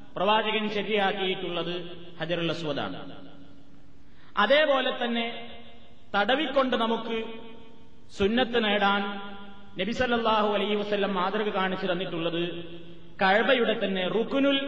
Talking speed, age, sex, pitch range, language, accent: 75 wpm, 30-49, male, 185-245 Hz, Malayalam, native